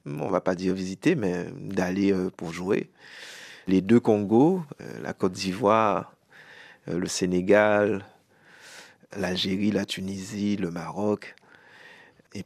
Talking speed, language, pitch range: 110 wpm, French, 95-110 Hz